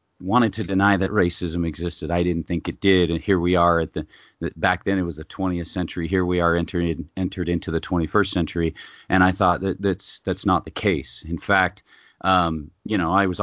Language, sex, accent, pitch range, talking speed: English, male, American, 85-95 Hz, 220 wpm